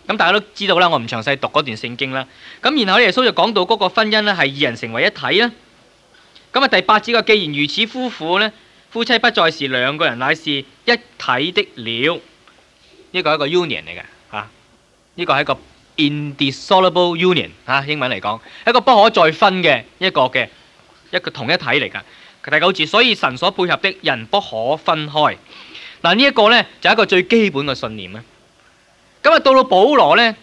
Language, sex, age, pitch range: Chinese, male, 20-39, 140-215 Hz